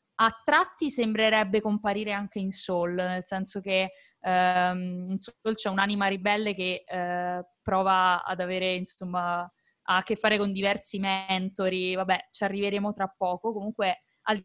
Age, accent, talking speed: 20-39, native, 145 wpm